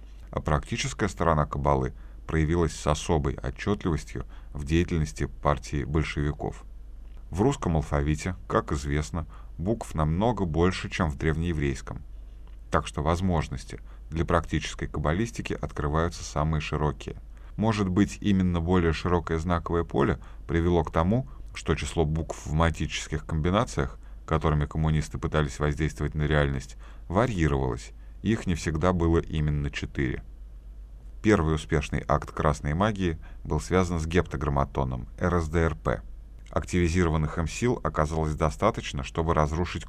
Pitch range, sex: 75-90 Hz, male